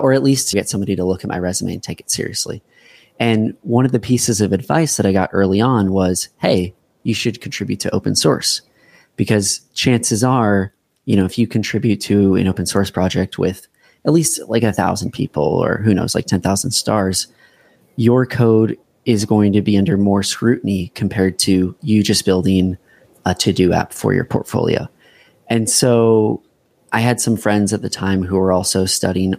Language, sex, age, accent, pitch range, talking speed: English, male, 20-39, American, 95-115 Hz, 190 wpm